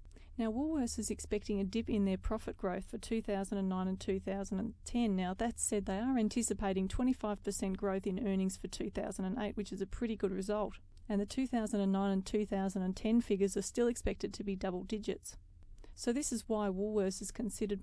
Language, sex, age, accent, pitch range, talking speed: English, female, 30-49, Australian, 195-220 Hz, 175 wpm